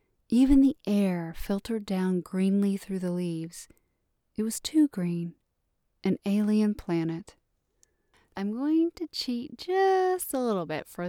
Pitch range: 180-230 Hz